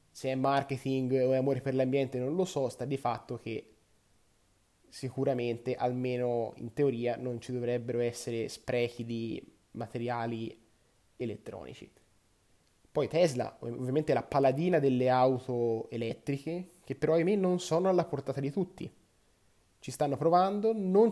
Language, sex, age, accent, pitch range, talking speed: Italian, male, 20-39, native, 115-140 Hz, 135 wpm